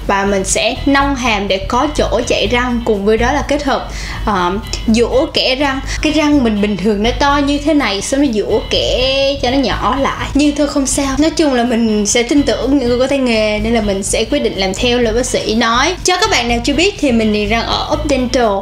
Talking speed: 250 wpm